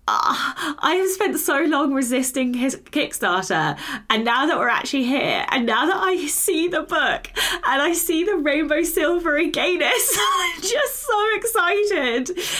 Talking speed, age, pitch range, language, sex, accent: 150 wpm, 20-39, 185-295 Hz, English, female, British